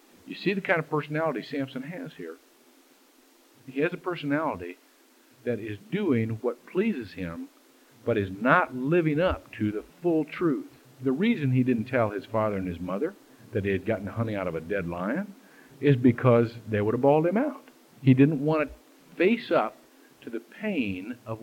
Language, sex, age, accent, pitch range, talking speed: English, male, 50-69, American, 120-180 Hz, 185 wpm